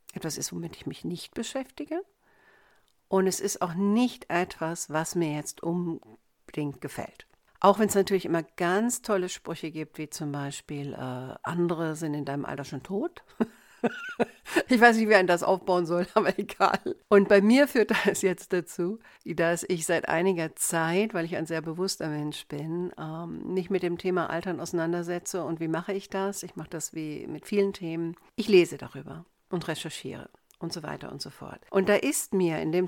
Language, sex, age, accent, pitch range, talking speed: German, female, 60-79, German, 155-190 Hz, 190 wpm